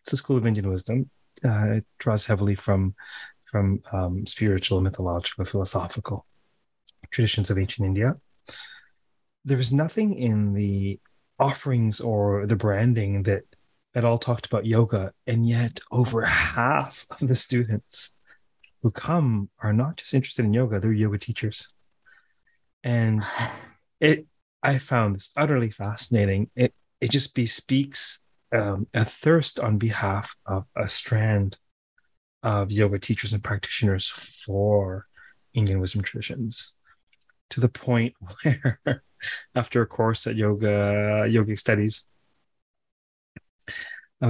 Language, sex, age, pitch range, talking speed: English, male, 30-49, 100-125 Hz, 125 wpm